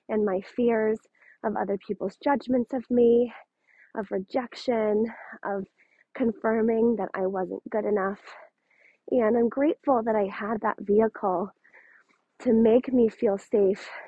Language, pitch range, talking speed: English, 210-250 Hz, 130 wpm